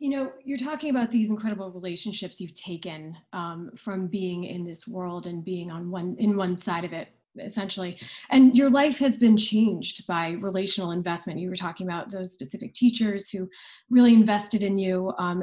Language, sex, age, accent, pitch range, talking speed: English, female, 30-49, American, 185-230 Hz, 185 wpm